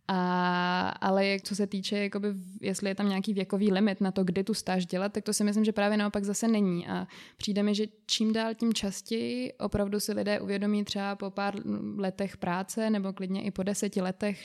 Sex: female